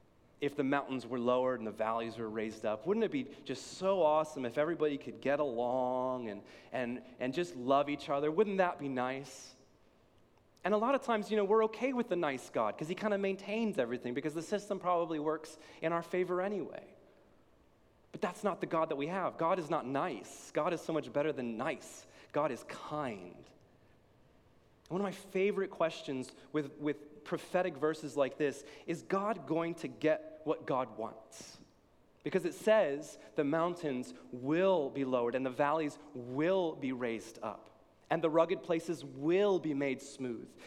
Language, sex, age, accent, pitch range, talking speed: English, male, 30-49, American, 130-175 Hz, 185 wpm